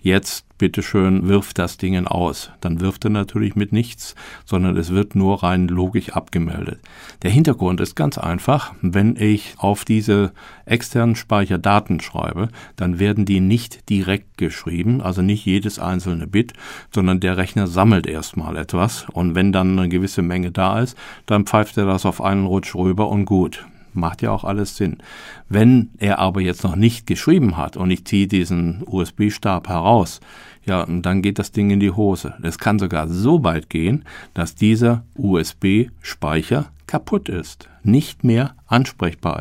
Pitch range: 90-105 Hz